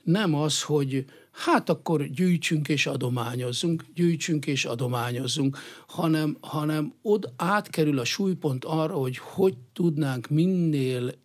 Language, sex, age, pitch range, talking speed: Hungarian, male, 60-79, 125-160 Hz, 115 wpm